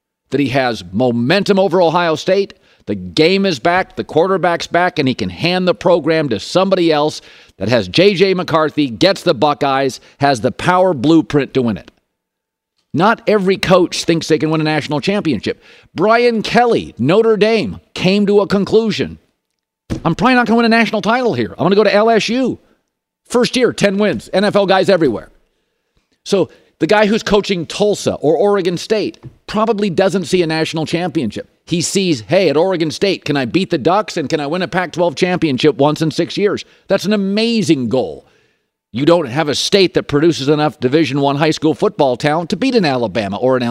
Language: English